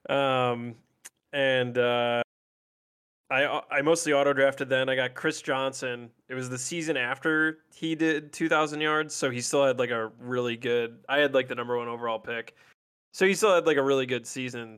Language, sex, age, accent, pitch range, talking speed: English, male, 20-39, American, 120-140 Hz, 195 wpm